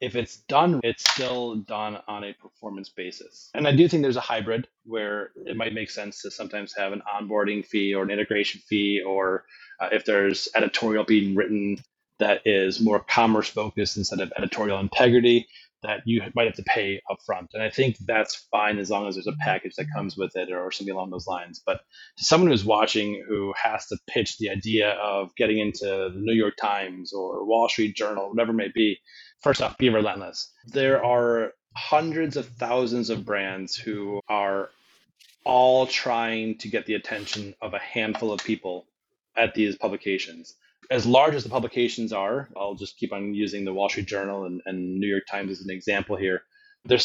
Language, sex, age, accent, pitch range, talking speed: English, male, 30-49, American, 100-115 Hz, 195 wpm